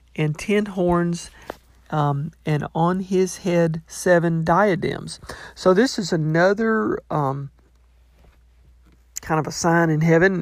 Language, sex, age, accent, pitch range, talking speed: English, male, 50-69, American, 150-185 Hz, 120 wpm